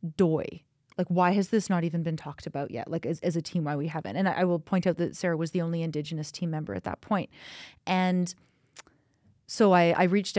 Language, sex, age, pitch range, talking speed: English, female, 30-49, 160-185 Hz, 235 wpm